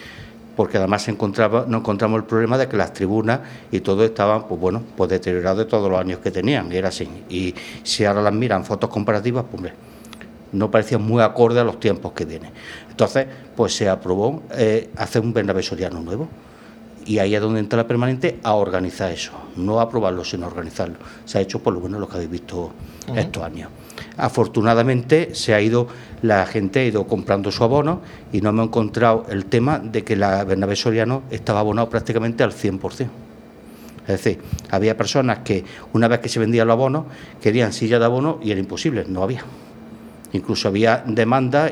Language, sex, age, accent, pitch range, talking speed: Spanish, male, 60-79, Spanish, 100-120 Hz, 195 wpm